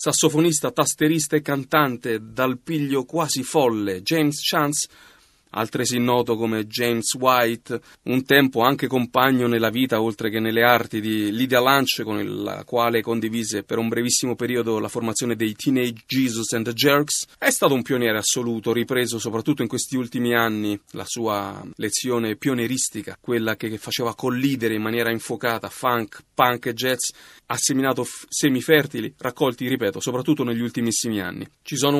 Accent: native